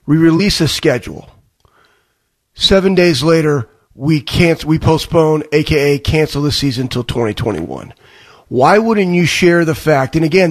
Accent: American